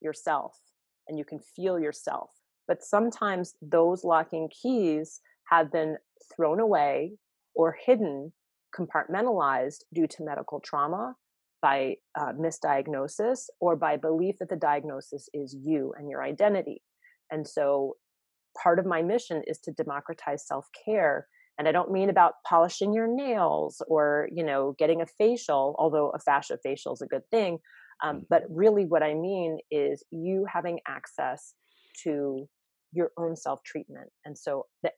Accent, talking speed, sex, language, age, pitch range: American, 145 wpm, female, English, 30-49, 155-210 Hz